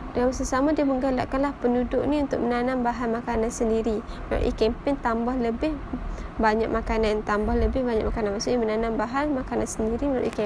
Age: 20-39